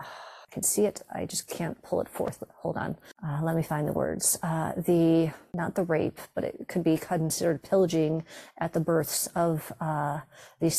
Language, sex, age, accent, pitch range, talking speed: English, female, 40-59, American, 165-180 Hz, 190 wpm